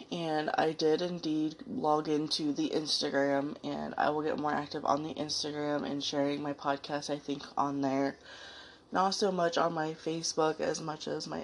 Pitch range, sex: 135-155 Hz, female